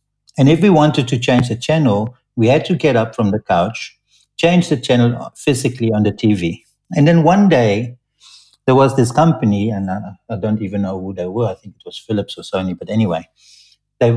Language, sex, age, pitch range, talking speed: English, male, 60-79, 110-135 Hz, 210 wpm